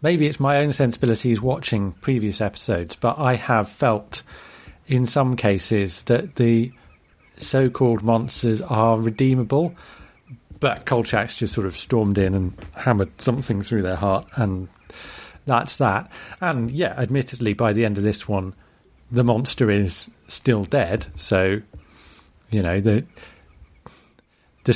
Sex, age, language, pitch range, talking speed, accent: male, 40-59, English, 100-130 Hz, 135 wpm, British